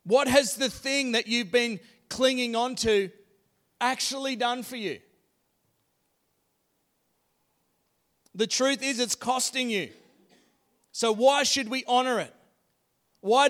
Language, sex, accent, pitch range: English, male, Australian, 215-250 Hz